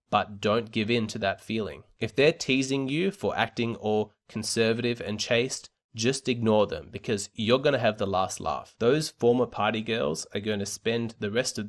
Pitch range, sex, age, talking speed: 100-120 Hz, male, 20-39, 190 wpm